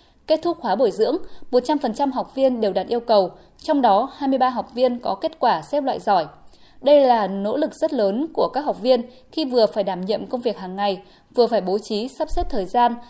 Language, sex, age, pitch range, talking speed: Vietnamese, female, 20-39, 215-275 Hz, 230 wpm